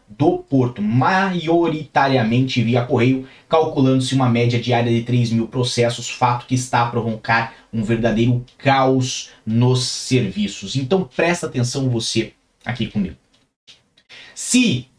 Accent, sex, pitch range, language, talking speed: Brazilian, male, 115-140 Hz, Portuguese, 120 wpm